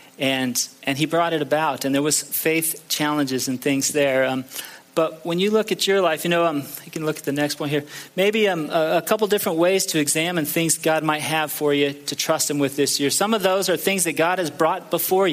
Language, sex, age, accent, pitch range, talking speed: English, male, 40-59, American, 140-165 Hz, 245 wpm